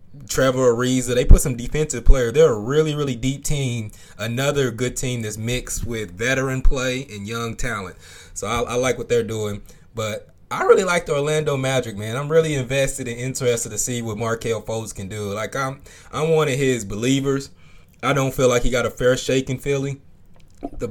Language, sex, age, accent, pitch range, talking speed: English, male, 20-39, American, 105-135 Hz, 200 wpm